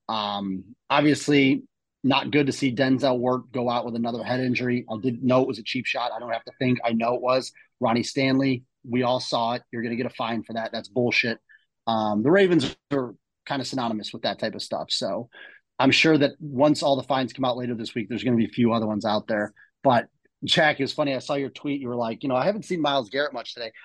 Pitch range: 120-140 Hz